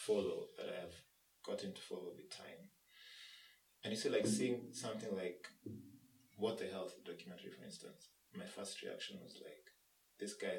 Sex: male